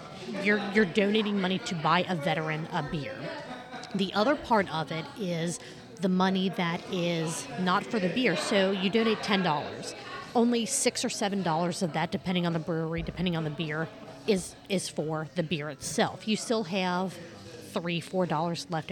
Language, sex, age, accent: English, female, 30-49, American